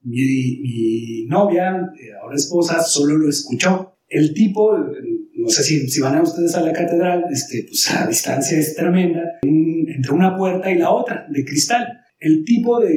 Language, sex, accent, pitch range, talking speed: Spanish, male, Mexican, 165-225 Hz, 175 wpm